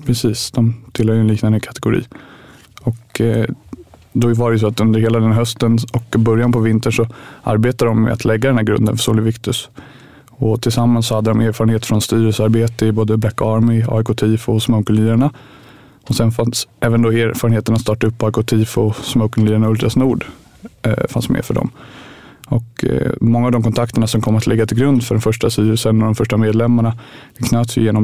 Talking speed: 195 wpm